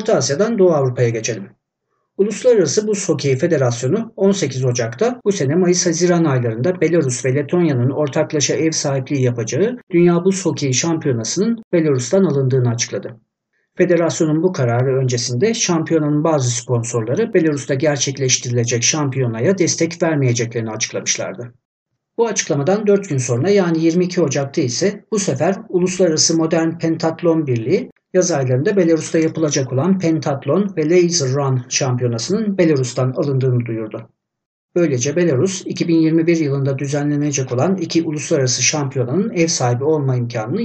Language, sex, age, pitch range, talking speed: Turkish, male, 60-79, 130-180 Hz, 125 wpm